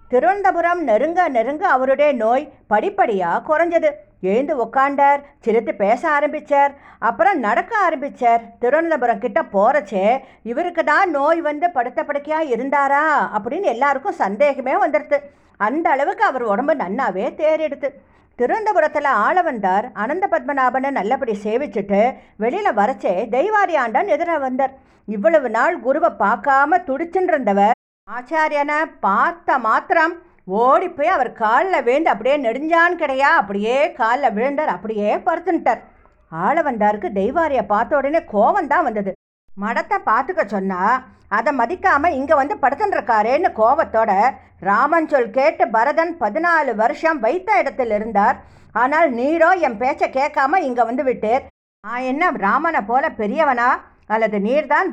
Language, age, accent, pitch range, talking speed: English, 50-69, Indian, 235-325 Hz, 115 wpm